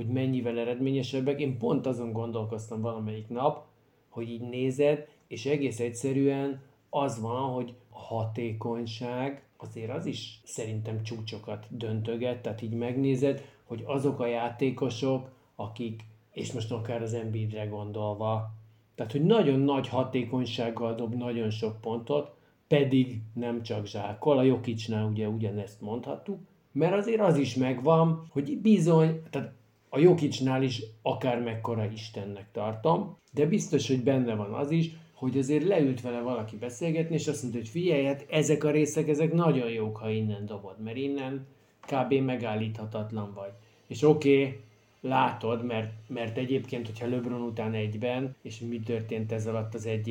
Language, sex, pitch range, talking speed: Hungarian, male, 110-135 Hz, 145 wpm